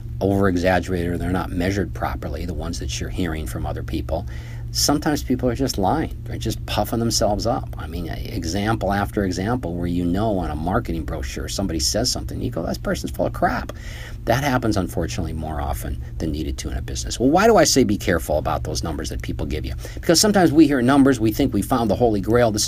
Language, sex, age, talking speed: English, male, 50-69, 225 wpm